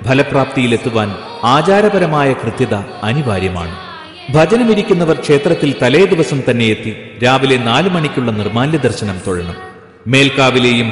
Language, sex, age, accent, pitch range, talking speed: Malayalam, male, 40-59, native, 110-155 Hz, 90 wpm